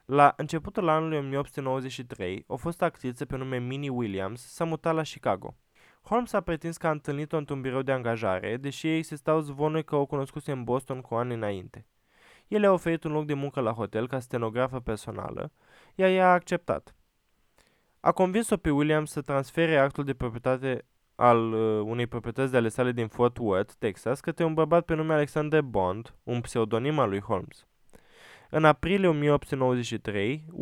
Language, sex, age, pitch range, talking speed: Romanian, male, 20-39, 120-150 Hz, 170 wpm